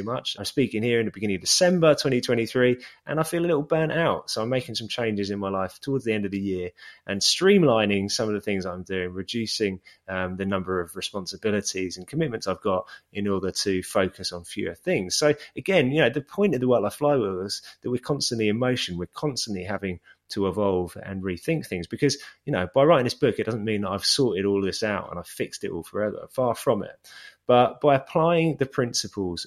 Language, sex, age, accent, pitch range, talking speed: English, male, 20-39, British, 95-130 Hz, 230 wpm